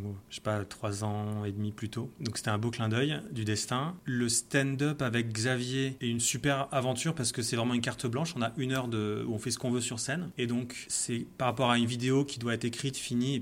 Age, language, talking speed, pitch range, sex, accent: 30-49, French, 265 wpm, 110-130 Hz, male, French